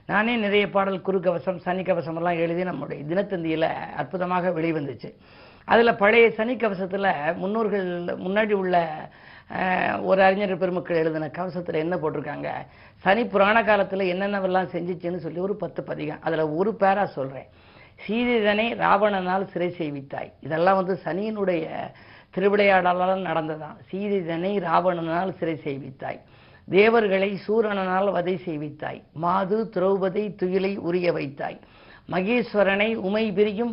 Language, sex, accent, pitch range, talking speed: Tamil, female, native, 170-205 Hz, 110 wpm